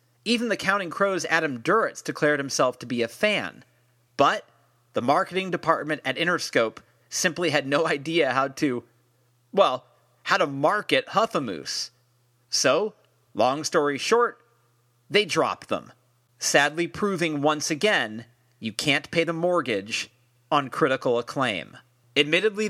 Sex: male